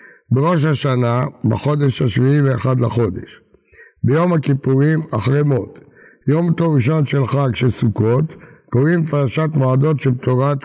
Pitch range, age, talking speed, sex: 125-150 Hz, 60-79, 125 wpm, male